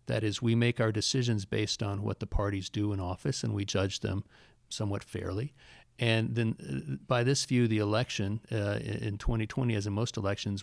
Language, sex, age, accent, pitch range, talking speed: English, male, 40-59, American, 100-115 Hz, 200 wpm